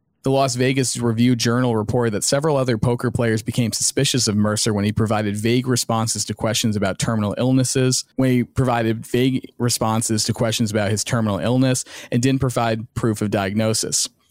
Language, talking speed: English, 175 wpm